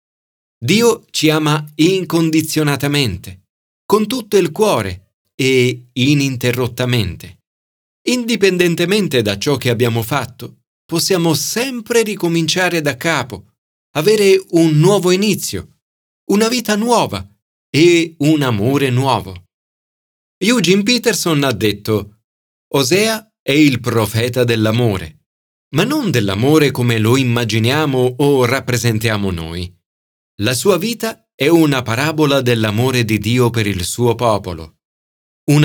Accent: native